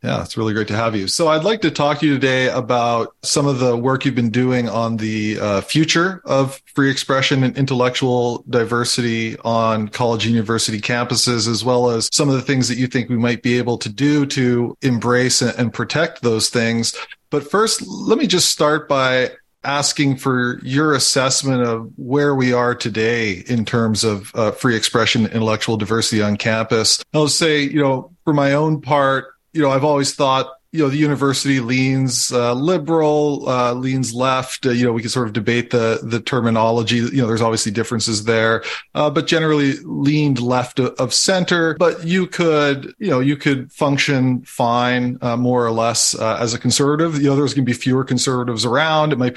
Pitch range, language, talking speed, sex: 115-140 Hz, English, 195 wpm, male